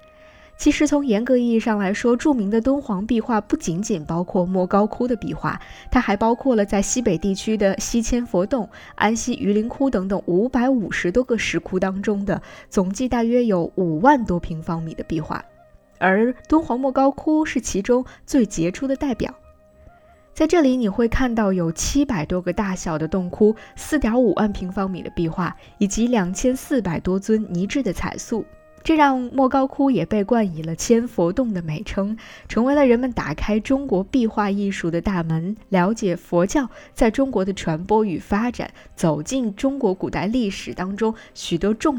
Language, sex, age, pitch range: Chinese, female, 20-39, 185-260 Hz